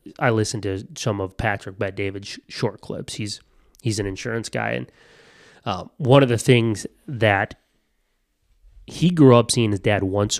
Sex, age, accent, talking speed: male, 30-49, American, 165 wpm